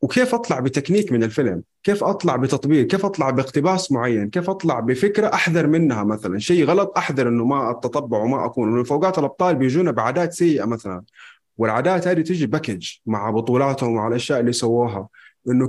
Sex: male